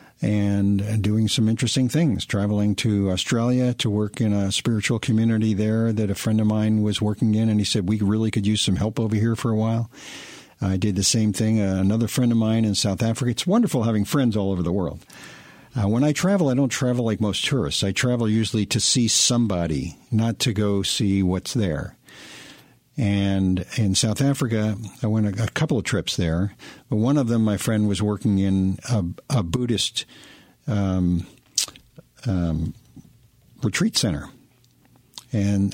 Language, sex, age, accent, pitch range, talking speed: English, male, 50-69, American, 100-115 Hz, 180 wpm